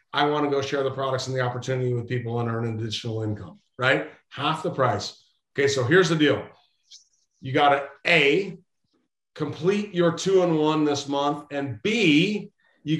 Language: English